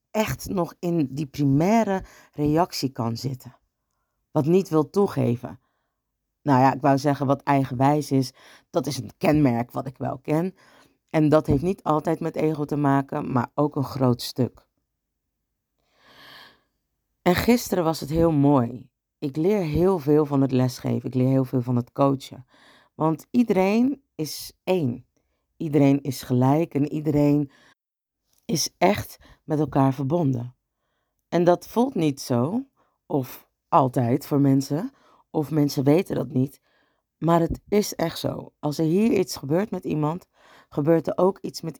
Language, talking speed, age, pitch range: Dutch, 155 wpm, 50-69, 130-160 Hz